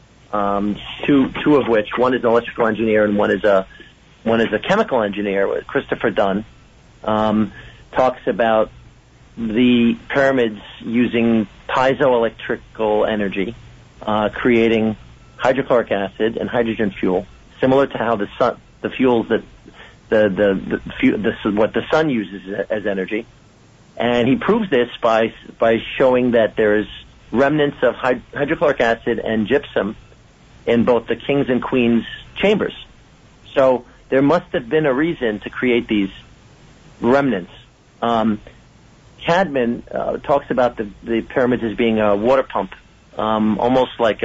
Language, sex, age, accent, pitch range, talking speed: English, male, 50-69, American, 105-125 Hz, 140 wpm